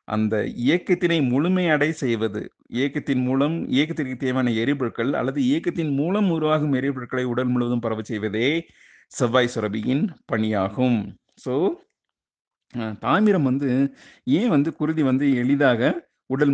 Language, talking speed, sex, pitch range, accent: Tamil, 110 wpm, male, 120-155 Hz, native